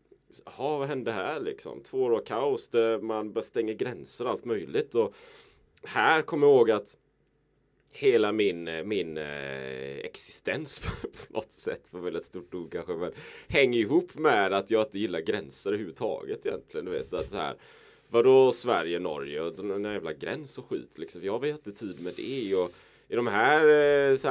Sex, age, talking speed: male, 20-39, 180 wpm